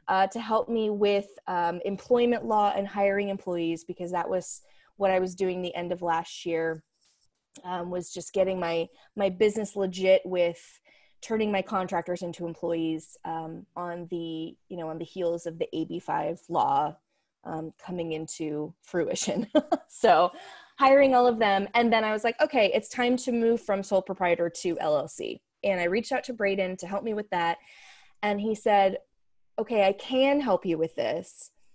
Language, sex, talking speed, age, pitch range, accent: English, female, 185 wpm, 20-39, 175-215 Hz, American